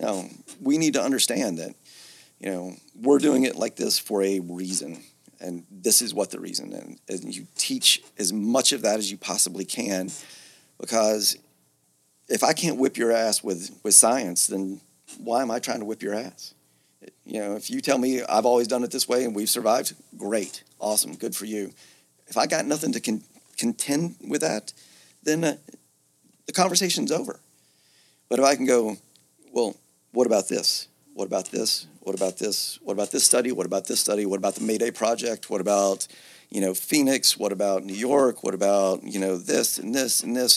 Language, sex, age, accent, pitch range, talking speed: English, male, 40-59, American, 85-125 Hz, 200 wpm